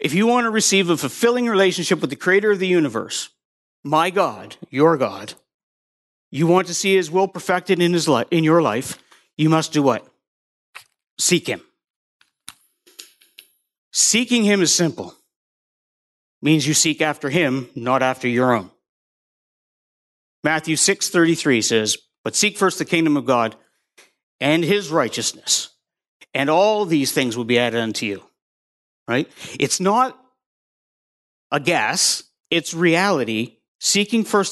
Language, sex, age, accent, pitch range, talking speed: English, male, 50-69, American, 125-190 Hz, 145 wpm